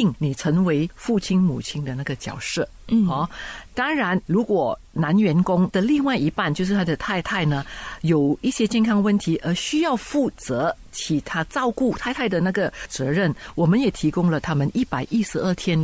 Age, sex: 50-69, female